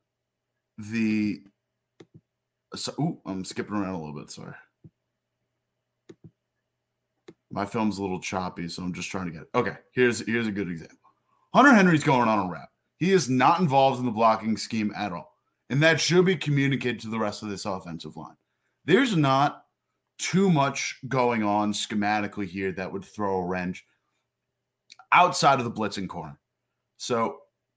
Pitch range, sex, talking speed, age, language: 110-145 Hz, male, 160 wpm, 30-49, English